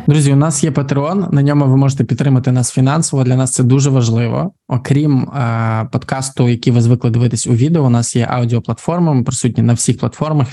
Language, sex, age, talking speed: Ukrainian, male, 20-39, 200 wpm